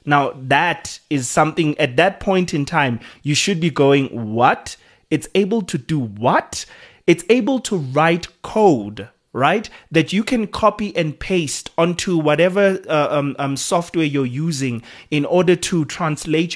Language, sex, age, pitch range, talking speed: English, male, 30-49, 135-175 Hz, 155 wpm